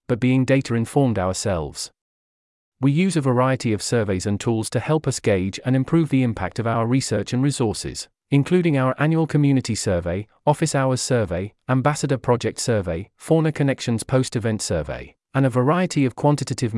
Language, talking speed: English, 155 wpm